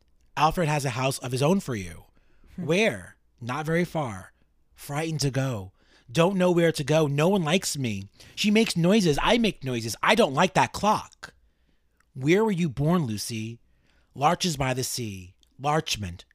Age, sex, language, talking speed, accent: 30-49, male, English, 170 wpm, American